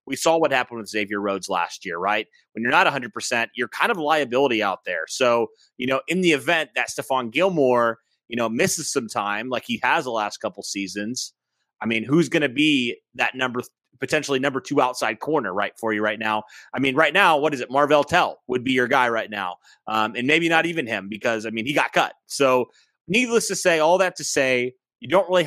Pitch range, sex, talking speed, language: 115-145 Hz, male, 230 wpm, English